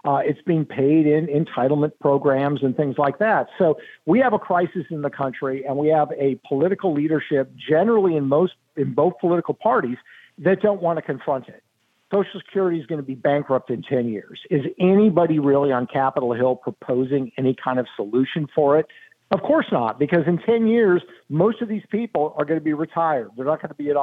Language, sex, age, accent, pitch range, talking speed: English, male, 50-69, American, 140-175 Hz, 205 wpm